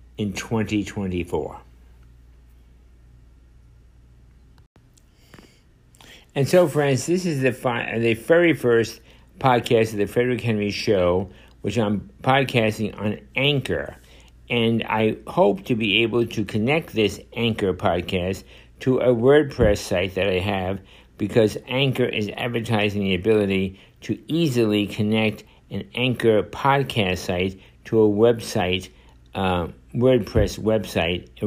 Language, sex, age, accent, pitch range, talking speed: English, male, 60-79, American, 95-120 Hz, 120 wpm